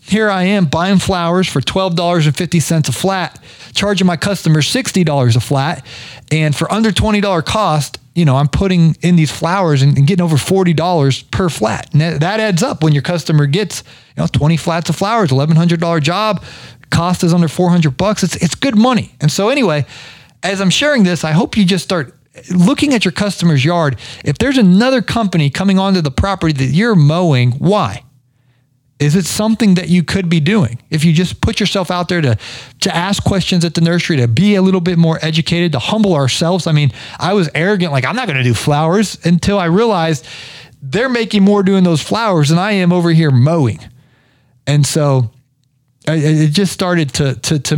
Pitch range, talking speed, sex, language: 145-185 Hz, 195 wpm, male, English